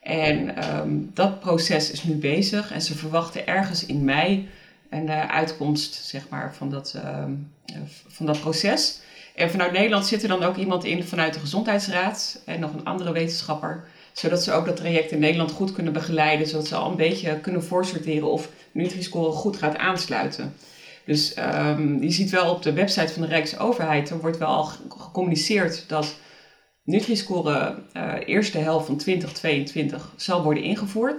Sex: female